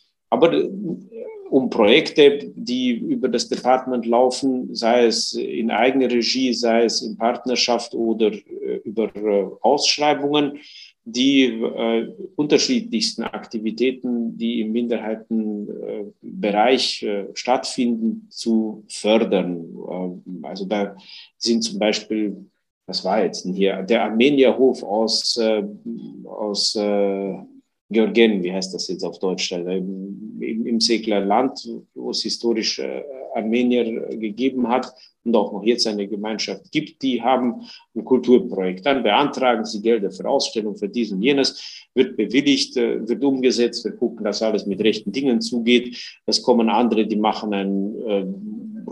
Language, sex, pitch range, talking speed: German, male, 105-130 Hz, 135 wpm